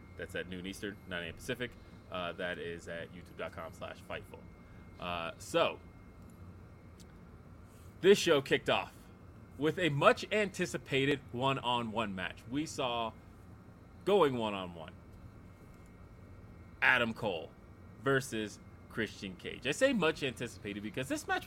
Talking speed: 110 wpm